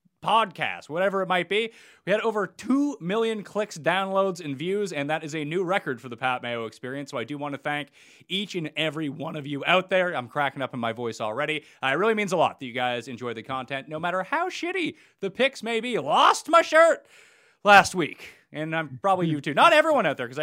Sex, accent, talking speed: male, American, 240 wpm